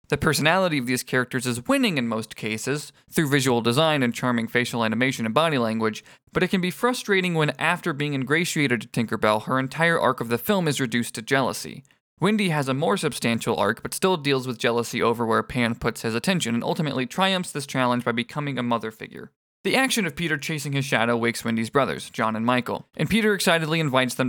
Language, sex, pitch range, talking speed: English, male, 120-160 Hz, 210 wpm